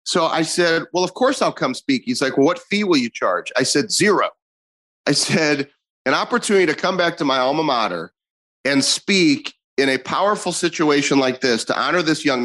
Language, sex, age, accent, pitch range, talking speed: English, male, 30-49, American, 125-180 Hz, 205 wpm